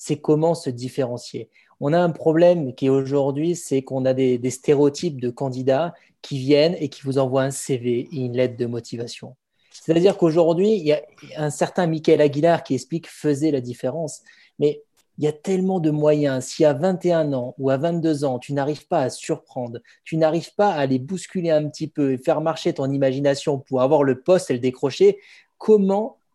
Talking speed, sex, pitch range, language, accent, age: 200 wpm, male, 135-175 Hz, French, French, 20-39